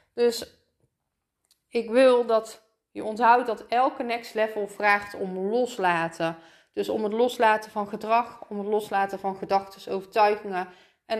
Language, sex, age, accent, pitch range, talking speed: Dutch, female, 20-39, Dutch, 195-260 Hz, 140 wpm